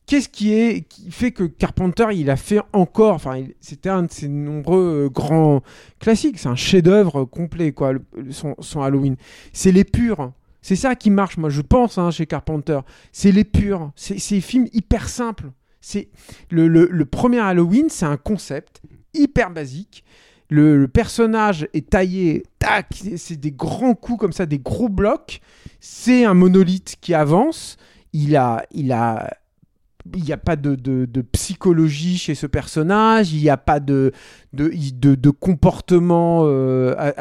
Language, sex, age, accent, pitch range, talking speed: French, male, 40-59, French, 145-195 Hz, 175 wpm